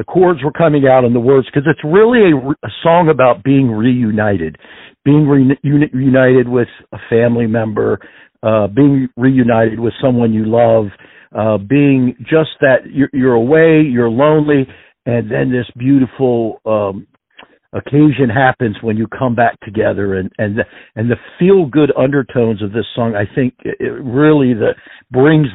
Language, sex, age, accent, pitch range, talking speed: English, male, 60-79, American, 115-140 Hz, 160 wpm